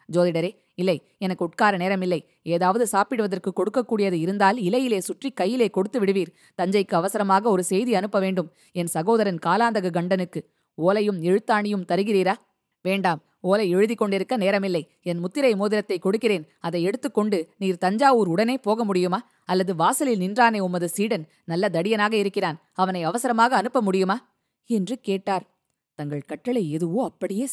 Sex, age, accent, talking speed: female, 20-39, native, 135 wpm